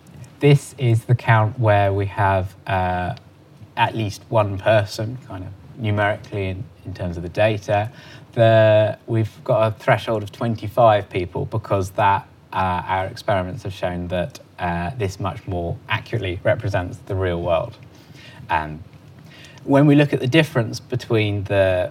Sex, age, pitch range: male, 20-39, 100-130 Hz